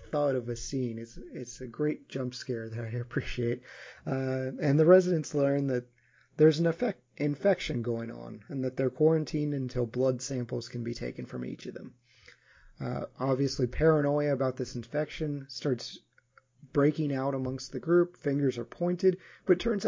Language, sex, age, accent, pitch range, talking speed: English, male, 30-49, American, 125-150 Hz, 170 wpm